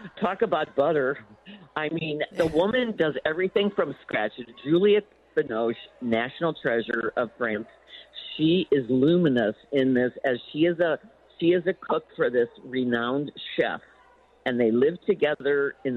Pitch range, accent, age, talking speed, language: 125-170 Hz, American, 50-69, 145 wpm, English